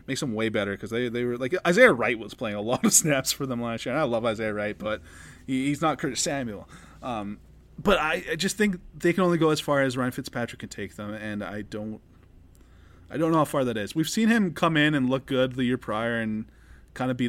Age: 20-39